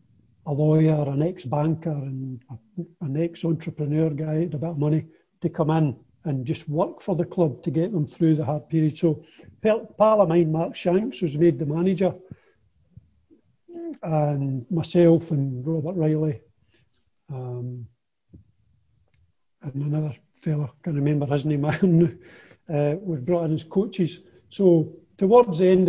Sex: male